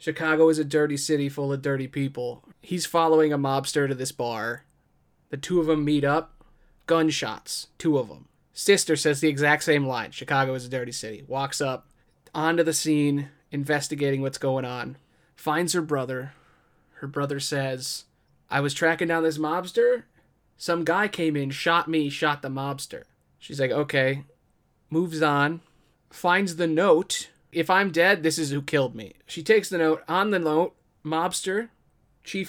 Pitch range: 140-165 Hz